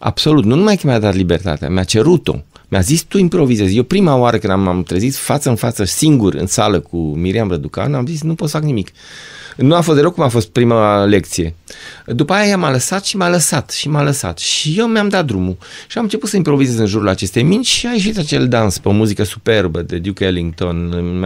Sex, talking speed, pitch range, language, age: male, 235 wpm, 95-145 Hz, Romanian, 30-49